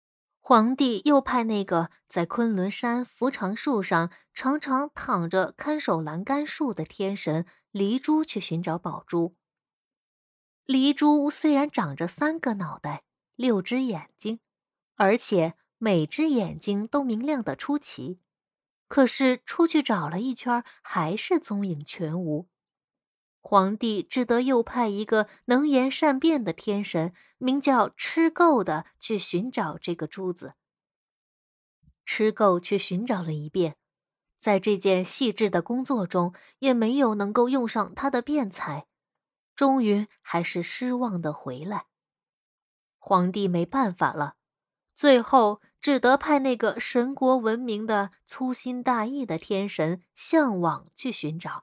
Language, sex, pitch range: Chinese, female, 180-260 Hz